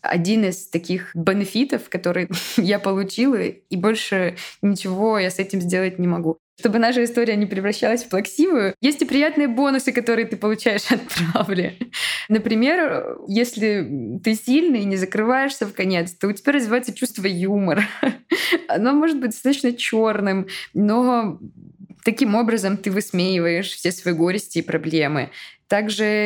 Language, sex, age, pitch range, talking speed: Ukrainian, female, 20-39, 180-220 Hz, 145 wpm